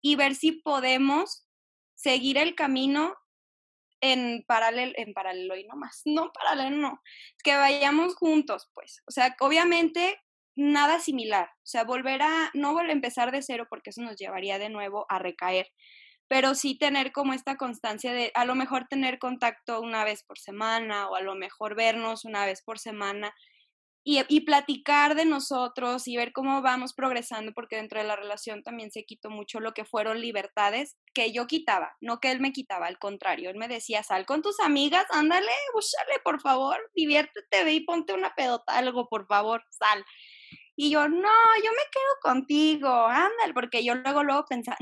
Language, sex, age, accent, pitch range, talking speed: Spanish, female, 20-39, Mexican, 225-290 Hz, 180 wpm